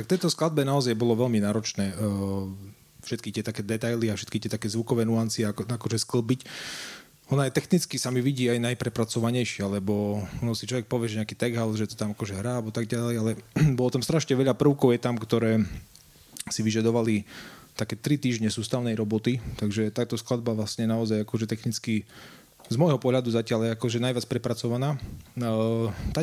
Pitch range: 110-130 Hz